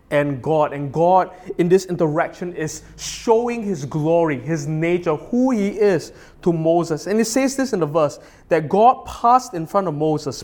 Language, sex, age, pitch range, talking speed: English, male, 20-39, 150-205 Hz, 185 wpm